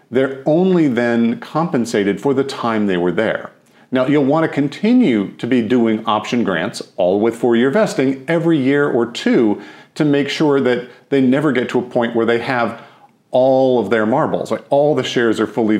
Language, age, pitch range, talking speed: English, 40-59, 110-140 Hz, 190 wpm